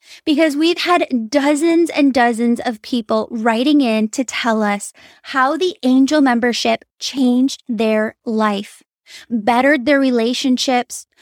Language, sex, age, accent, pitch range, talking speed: English, female, 10-29, American, 240-295 Hz, 125 wpm